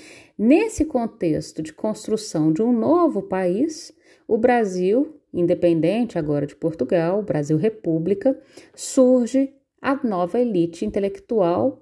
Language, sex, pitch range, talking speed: Portuguese, female, 185-285 Hz, 100 wpm